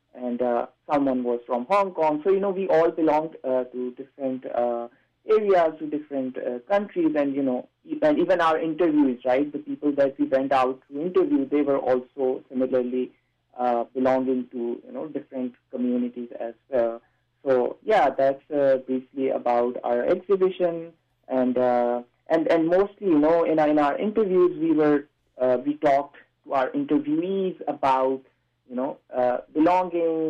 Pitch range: 125-165 Hz